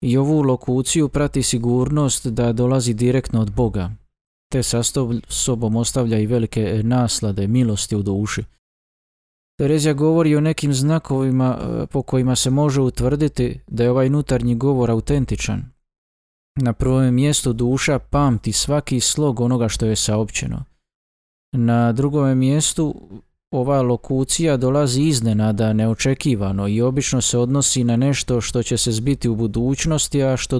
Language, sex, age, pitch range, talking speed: Croatian, male, 20-39, 115-140 Hz, 135 wpm